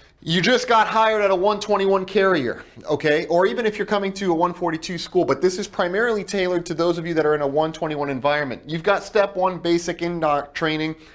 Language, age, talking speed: English, 30-49, 215 wpm